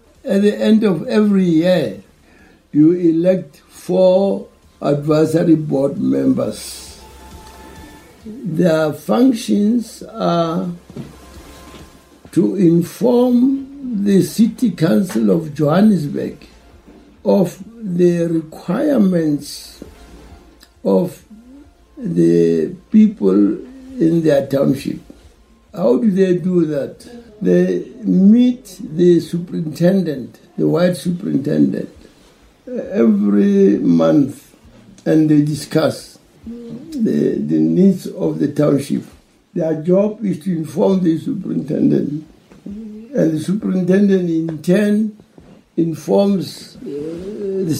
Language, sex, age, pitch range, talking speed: English, male, 60-79, 150-205 Hz, 85 wpm